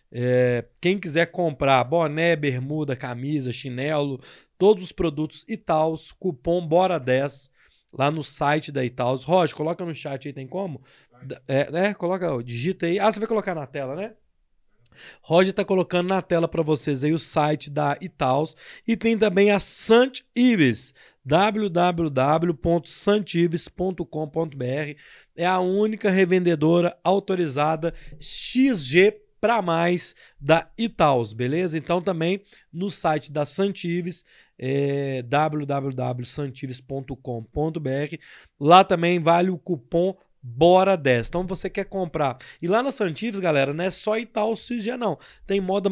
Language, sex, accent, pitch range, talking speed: Portuguese, male, Brazilian, 145-185 Hz, 130 wpm